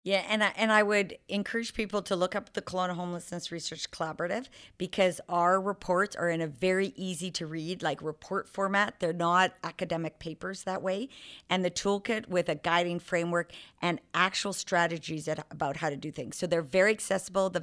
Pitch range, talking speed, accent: 165-185 Hz, 175 wpm, American